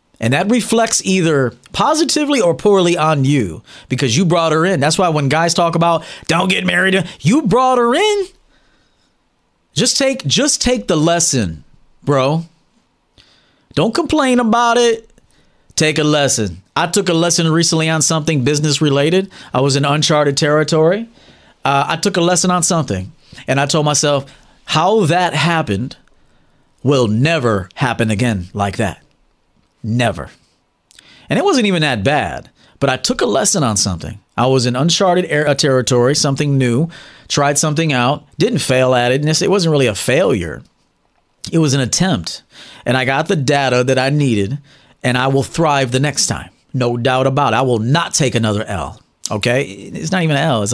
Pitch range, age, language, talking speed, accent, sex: 130-185 Hz, 30-49, English, 170 wpm, American, male